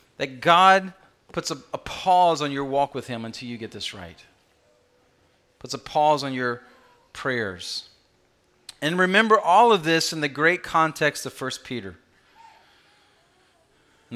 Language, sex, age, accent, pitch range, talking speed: English, male, 40-59, American, 125-175 Hz, 150 wpm